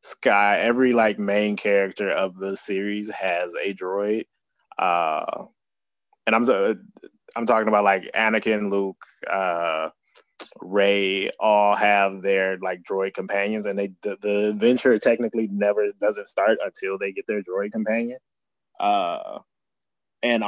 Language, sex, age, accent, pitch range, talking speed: English, male, 20-39, American, 100-115 Hz, 135 wpm